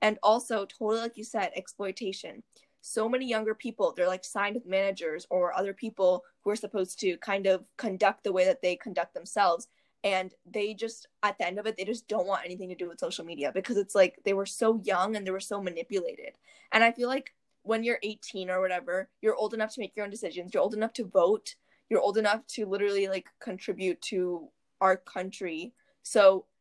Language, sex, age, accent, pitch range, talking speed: English, female, 10-29, American, 185-225 Hz, 215 wpm